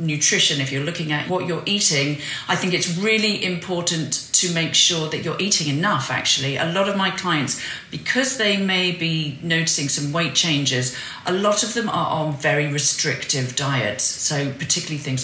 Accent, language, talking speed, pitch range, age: British, English, 180 wpm, 140-180 Hz, 40-59